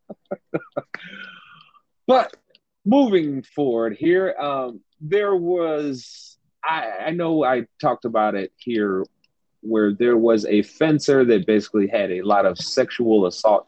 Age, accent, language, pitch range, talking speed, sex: 30-49, American, English, 95-120 Hz, 125 wpm, male